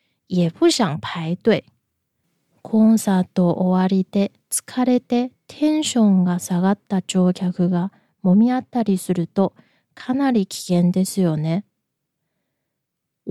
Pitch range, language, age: 175-225 Hz, Japanese, 20-39